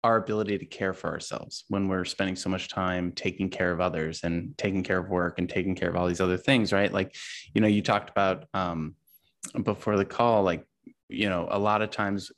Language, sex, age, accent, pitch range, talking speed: English, male, 20-39, American, 95-110 Hz, 230 wpm